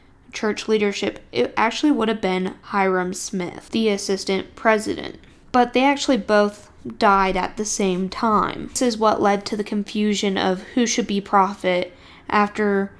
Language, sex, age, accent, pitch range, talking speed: English, female, 10-29, American, 190-220 Hz, 155 wpm